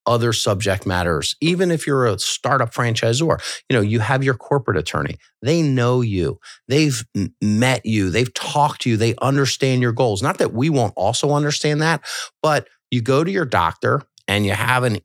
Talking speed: 185 wpm